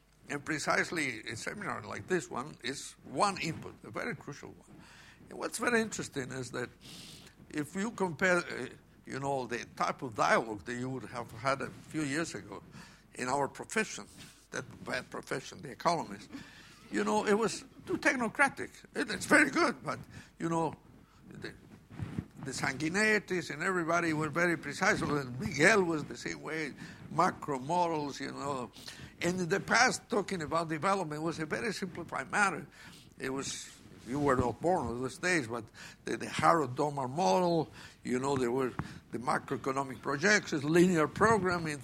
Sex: male